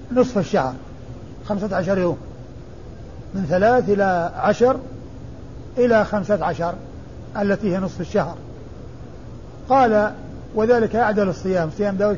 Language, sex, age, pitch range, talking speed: Arabic, male, 50-69, 180-210 Hz, 110 wpm